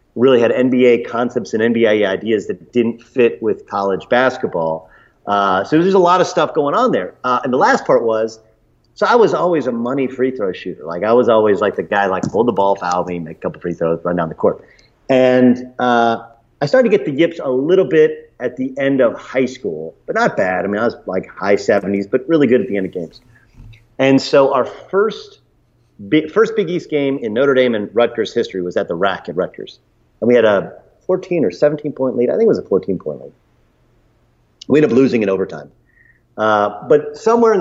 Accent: American